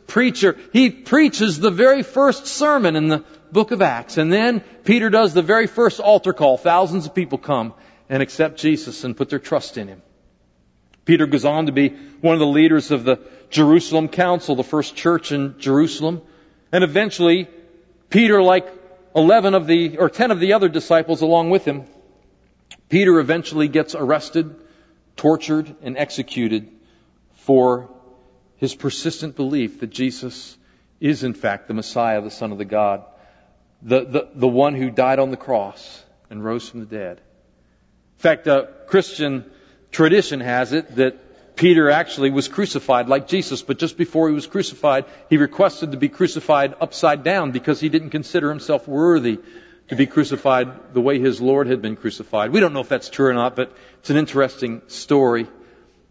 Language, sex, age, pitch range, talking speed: English, male, 50-69, 130-175 Hz, 170 wpm